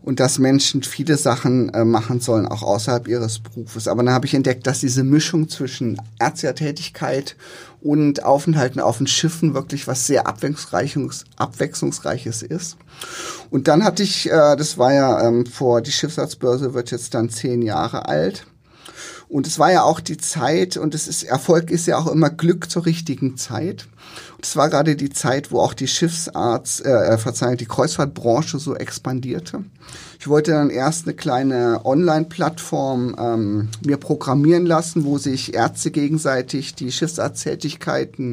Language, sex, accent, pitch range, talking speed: German, male, German, 125-155 Hz, 160 wpm